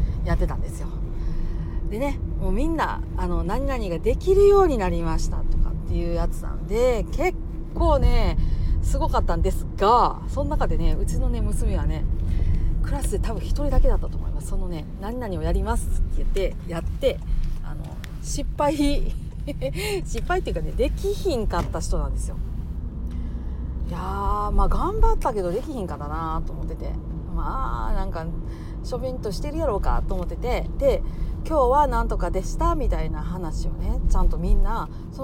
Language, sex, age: Japanese, female, 40-59